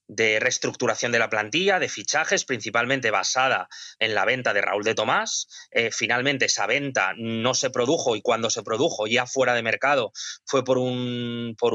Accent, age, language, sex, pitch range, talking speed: Spanish, 20-39, Spanish, male, 115-165 Hz, 180 wpm